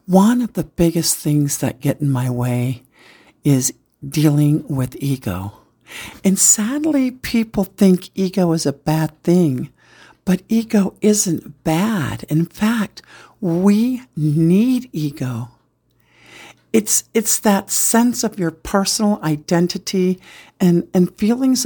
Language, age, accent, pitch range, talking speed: English, 60-79, American, 150-215 Hz, 120 wpm